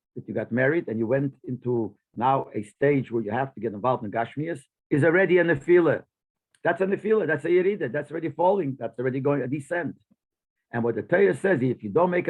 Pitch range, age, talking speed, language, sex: 120-165 Hz, 50-69, 245 wpm, English, male